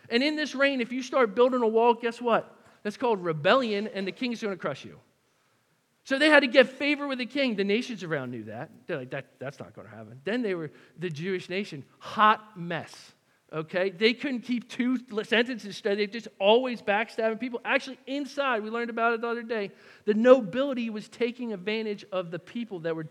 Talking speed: 220 wpm